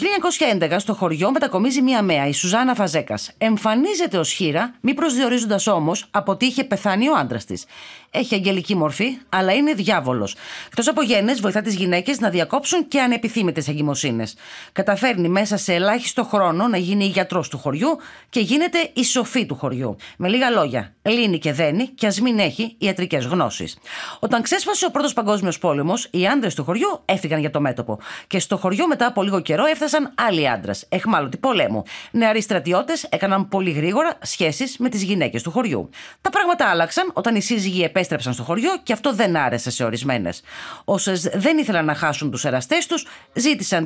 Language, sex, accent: Greek, female, native